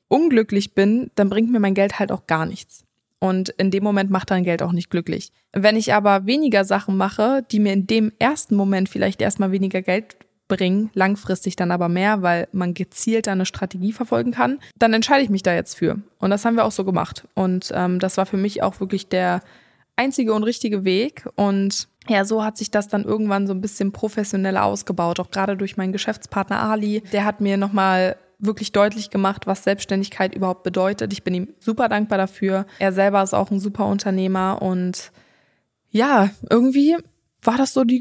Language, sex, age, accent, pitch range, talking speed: German, female, 20-39, German, 190-215 Hz, 200 wpm